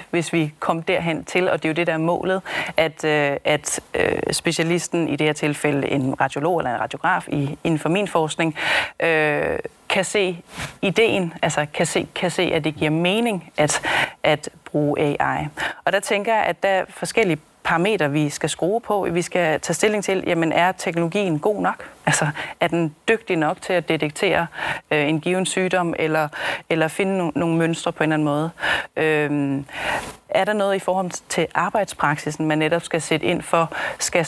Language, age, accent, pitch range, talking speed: Danish, 30-49, native, 155-185 Hz, 185 wpm